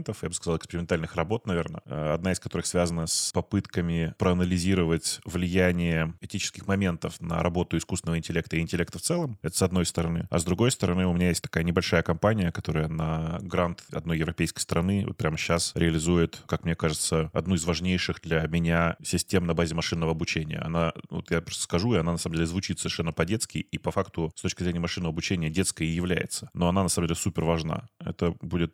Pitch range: 85-95 Hz